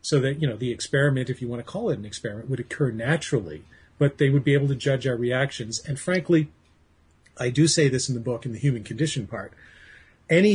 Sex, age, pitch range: male, 40-59, 120-150 Hz